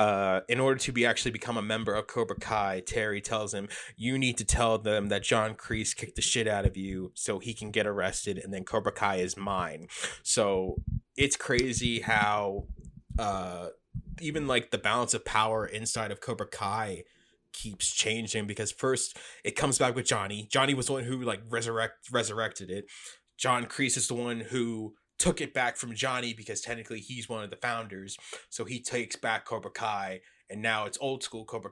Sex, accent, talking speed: male, American, 195 wpm